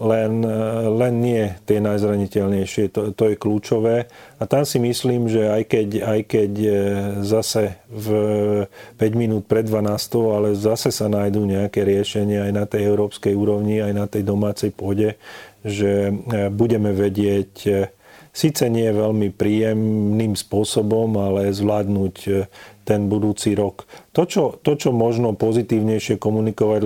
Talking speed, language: 135 wpm, Slovak